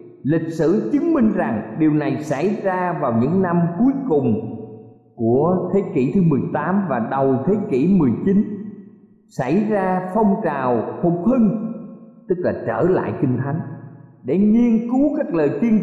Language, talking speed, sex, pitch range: Vietnamese, 160 wpm, male, 150-215 Hz